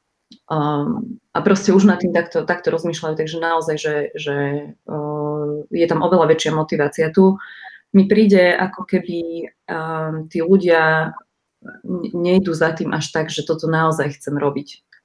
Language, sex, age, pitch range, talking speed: Slovak, female, 30-49, 155-185 Hz, 150 wpm